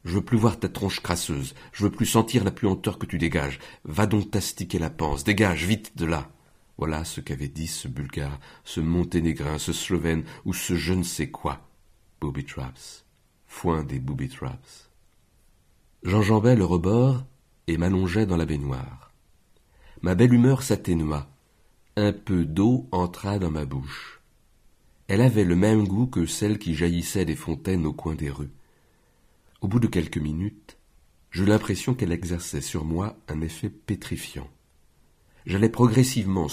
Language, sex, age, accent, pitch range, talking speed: French, male, 60-79, French, 80-105 Hz, 155 wpm